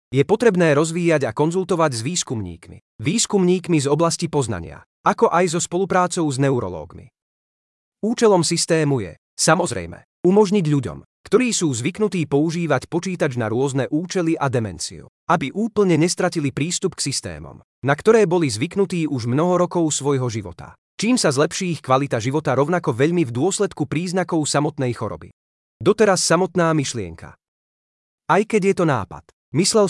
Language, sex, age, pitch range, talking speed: Slovak, male, 30-49, 130-180 Hz, 140 wpm